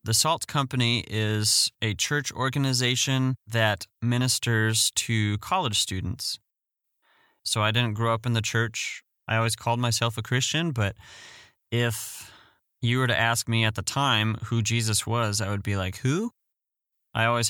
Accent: American